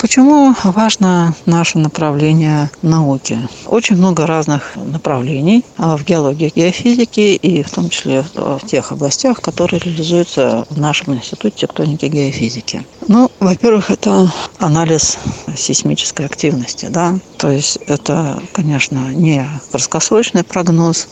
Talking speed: 120 wpm